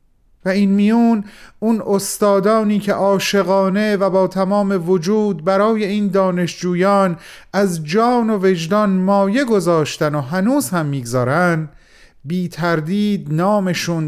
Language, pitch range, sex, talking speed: Persian, 160-205 Hz, male, 110 wpm